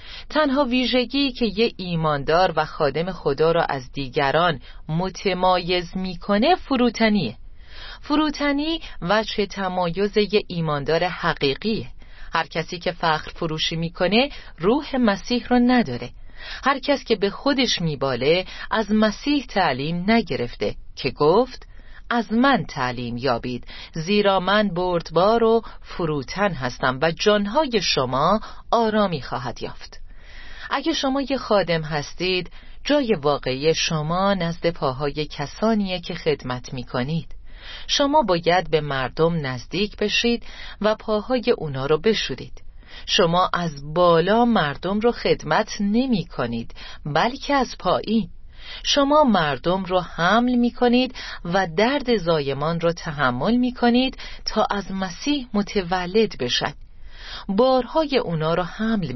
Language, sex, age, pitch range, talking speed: Persian, female, 40-59, 155-230 Hz, 115 wpm